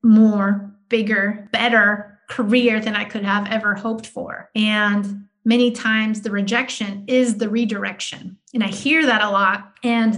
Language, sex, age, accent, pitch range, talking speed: English, female, 30-49, American, 205-235 Hz, 155 wpm